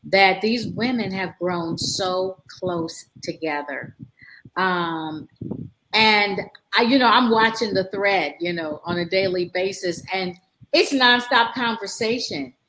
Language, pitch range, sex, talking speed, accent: English, 180-220 Hz, female, 130 wpm, American